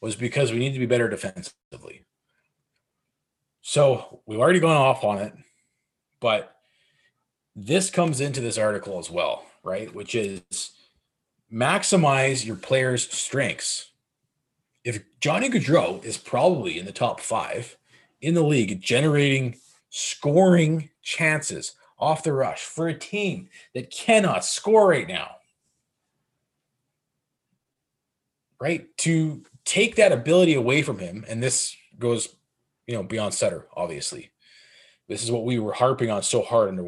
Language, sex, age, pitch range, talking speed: English, male, 30-49, 120-165 Hz, 135 wpm